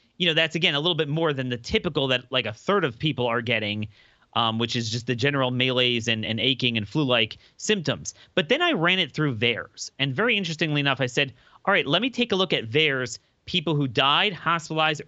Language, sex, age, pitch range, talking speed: English, male, 30-49, 120-160 Hz, 230 wpm